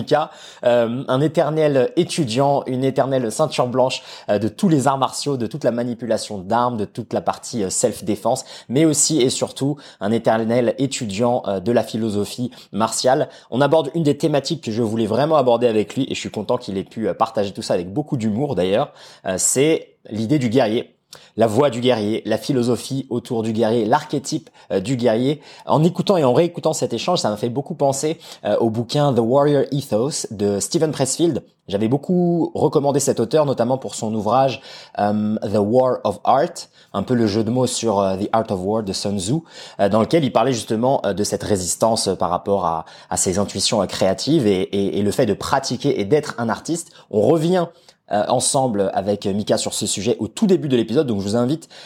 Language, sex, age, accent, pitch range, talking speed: French, male, 20-39, French, 115-150 Hz, 190 wpm